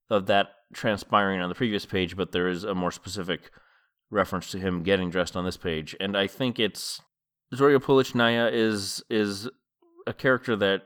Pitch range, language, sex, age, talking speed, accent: 90-115 Hz, English, male, 30-49, 175 wpm, American